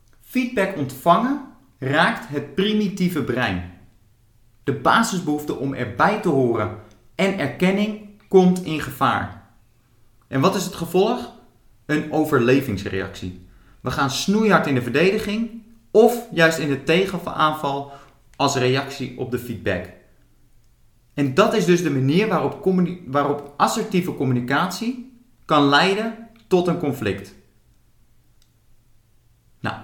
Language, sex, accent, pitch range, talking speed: Dutch, male, Dutch, 120-180 Hz, 115 wpm